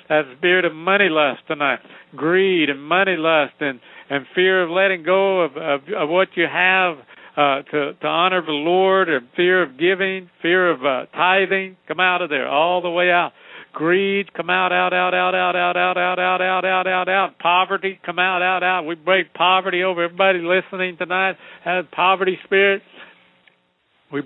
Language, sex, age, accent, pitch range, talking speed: English, male, 60-79, American, 170-190 Hz, 175 wpm